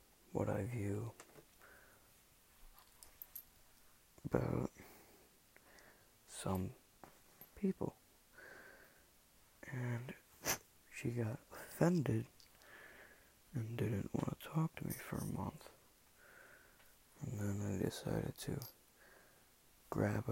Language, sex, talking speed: English, male, 75 wpm